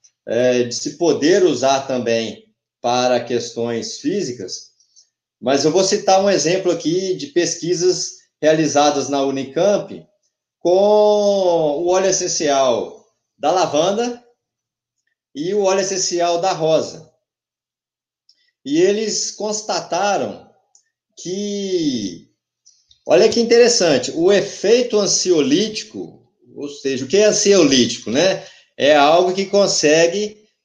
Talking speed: 105 wpm